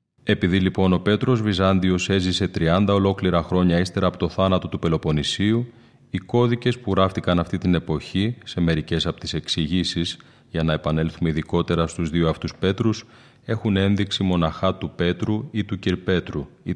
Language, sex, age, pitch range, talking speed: Greek, male, 30-49, 85-100 Hz, 160 wpm